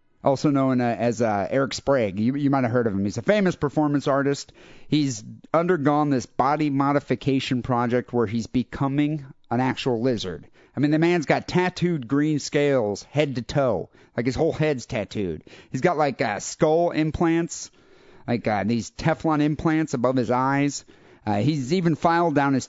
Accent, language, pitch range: American, English, 130-160 Hz